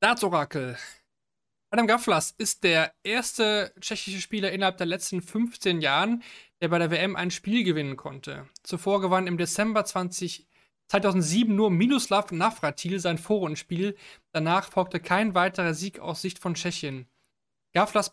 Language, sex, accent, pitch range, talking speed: German, male, German, 165-195 Hz, 135 wpm